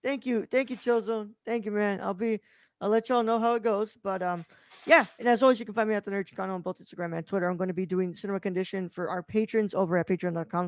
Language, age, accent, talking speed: English, 20-39, American, 270 wpm